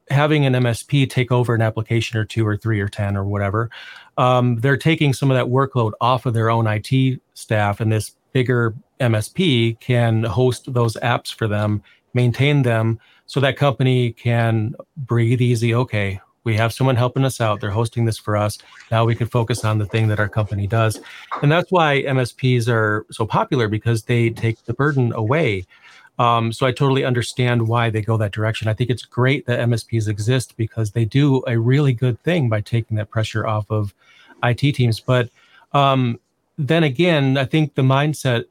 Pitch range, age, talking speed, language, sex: 110-130 Hz, 30-49, 190 wpm, English, male